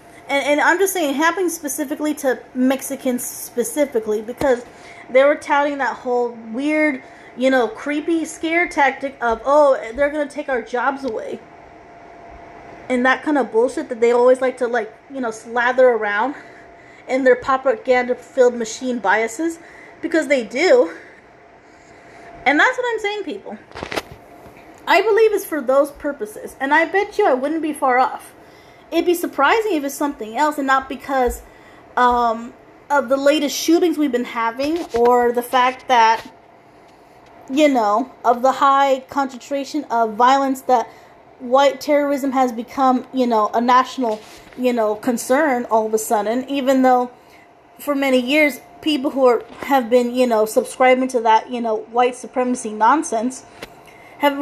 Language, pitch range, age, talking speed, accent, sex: English, 245-290 Hz, 20-39, 160 wpm, American, female